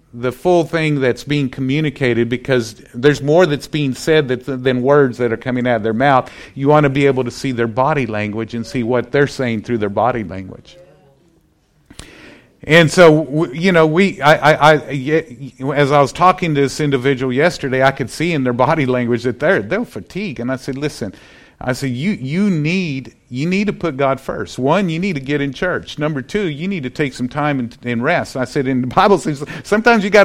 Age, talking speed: 50-69, 215 wpm